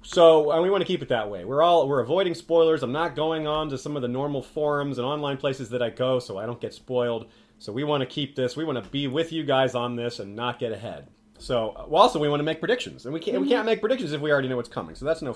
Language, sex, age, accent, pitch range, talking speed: English, male, 30-49, American, 120-160 Hz, 300 wpm